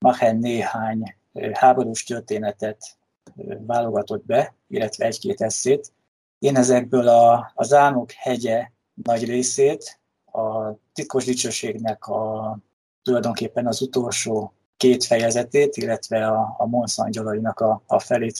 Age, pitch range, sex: 20-39, 115-130 Hz, male